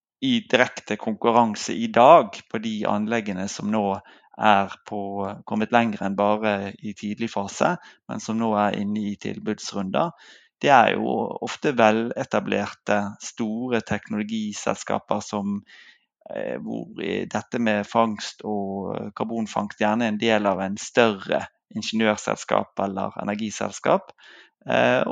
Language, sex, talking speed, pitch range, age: English, male, 125 wpm, 105-115 Hz, 30-49